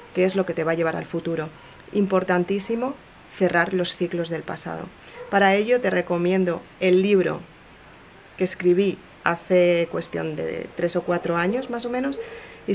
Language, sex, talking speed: Spanish, female, 165 wpm